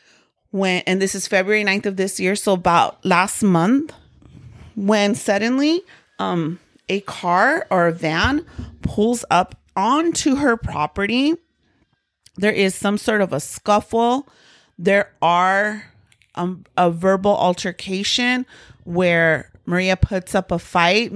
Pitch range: 165-210 Hz